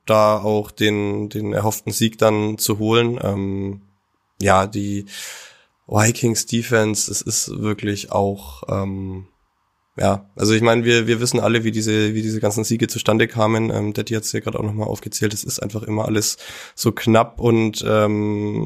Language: German